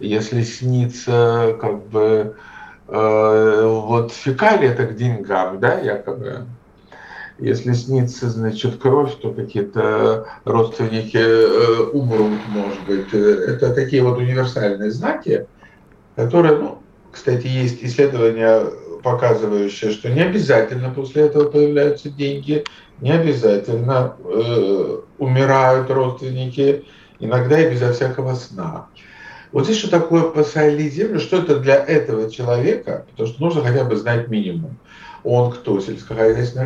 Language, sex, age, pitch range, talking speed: Russian, male, 50-69, 110-145 Hz, 120 wpm